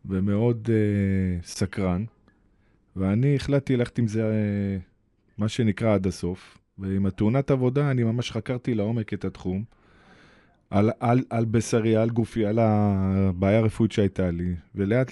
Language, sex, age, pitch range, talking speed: Hebrew, male, 20-39, 100-130 Hz, 135 wpm